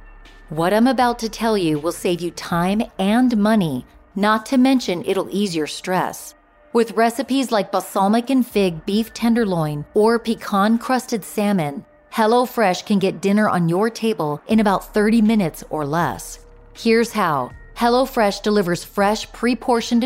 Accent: American